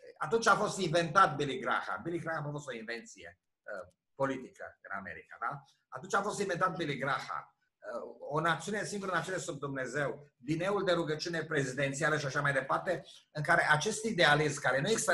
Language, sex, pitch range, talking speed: Romanian, male, 145-185 Hz, 180 wpm